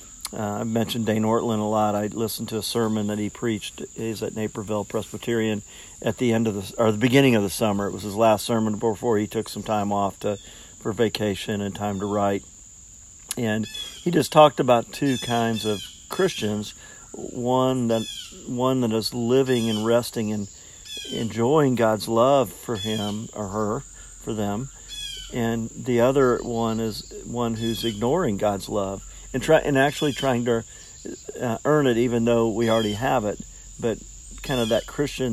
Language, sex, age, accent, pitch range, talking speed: English, male, 50-69, American, 105-120 Hz, 175 wpm